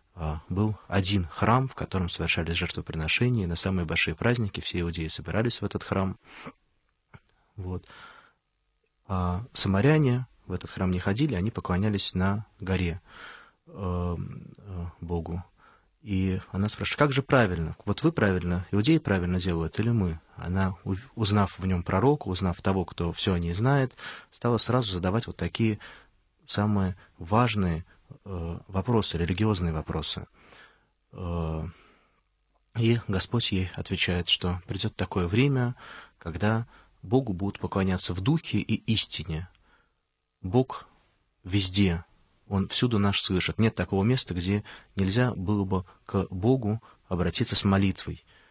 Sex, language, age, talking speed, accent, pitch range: male, Russian, 30-49, 120 wpm, native, 90-110 Hz